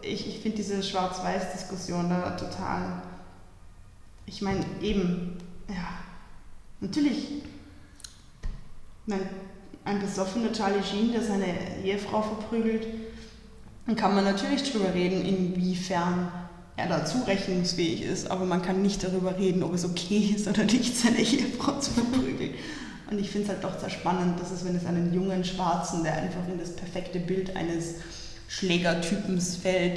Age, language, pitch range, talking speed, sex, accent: 20-39, German, 175-200 Hz, 140 wpm, female, German